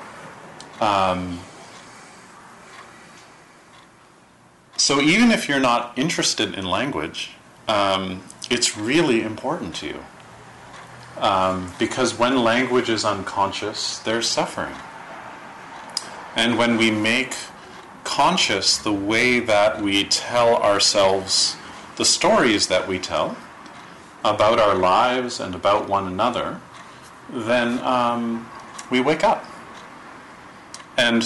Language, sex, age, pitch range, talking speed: English, male, 40-59, 95-125 Hz, 100 wpm